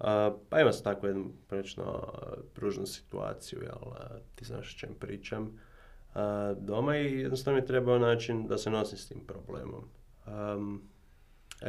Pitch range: 100-125 Hz